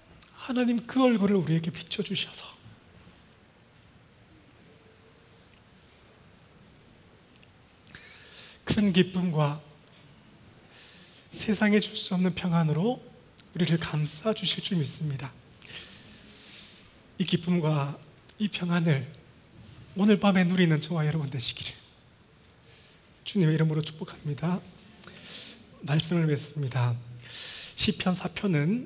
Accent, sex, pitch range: native, male, 155-210 Hz